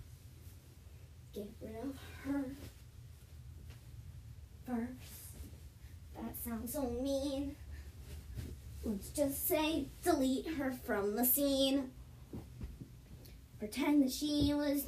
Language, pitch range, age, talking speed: English, 225-285 Hz, 20-39, 85 wpm